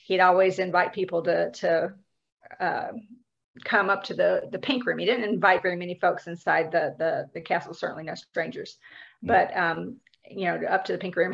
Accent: American